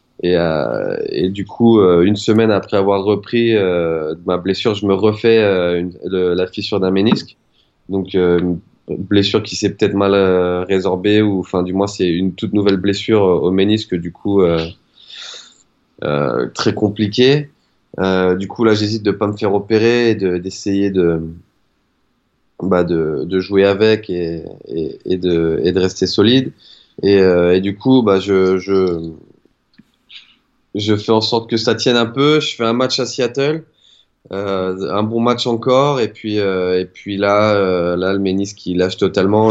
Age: 20-39